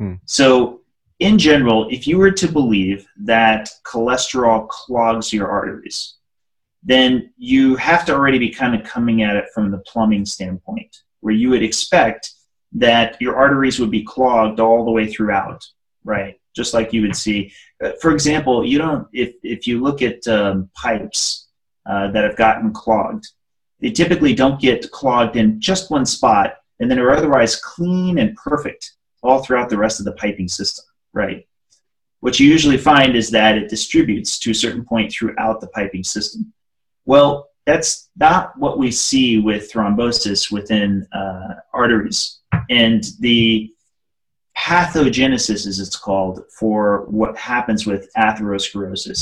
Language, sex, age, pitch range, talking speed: English, male, 30-49, 105-135 Hz, 155 wpm